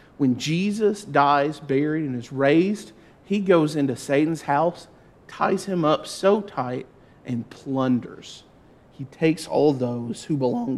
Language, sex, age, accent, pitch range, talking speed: English, male, 40-59, American, 140-175 Hz, 140 wpm